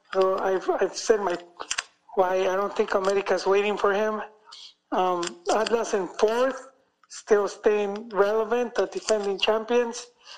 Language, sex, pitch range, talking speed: English, male, 190-220 Hz, 135 wpm